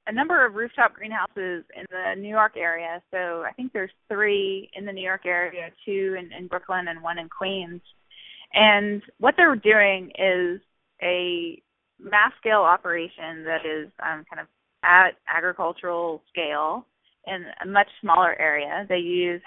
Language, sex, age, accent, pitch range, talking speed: English, female, 20-39, American, 175-205 Hz, 160 wpm